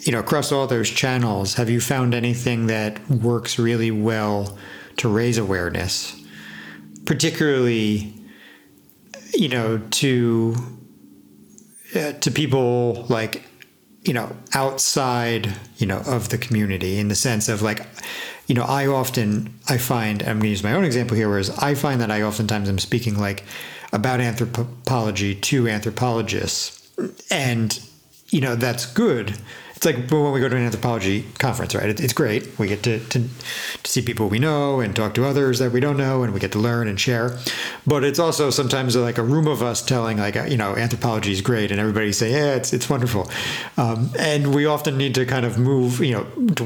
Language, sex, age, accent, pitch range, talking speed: English, male, 50-69, American, 105-130 Hz, 180 wpm